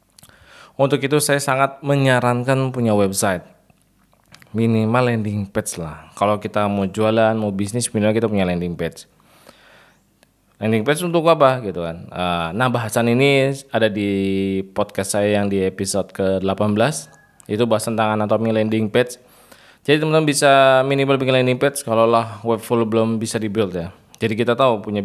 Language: Indonesian